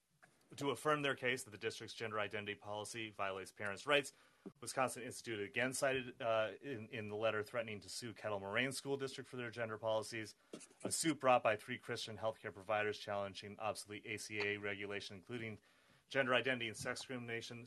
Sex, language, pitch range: male, English, 105-125 Hz